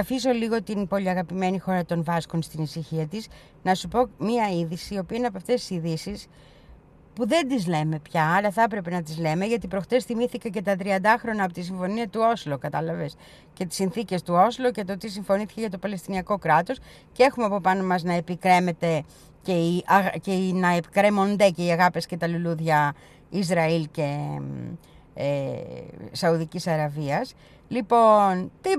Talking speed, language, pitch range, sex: 180 wpm, Greek, 165-230 Hz, female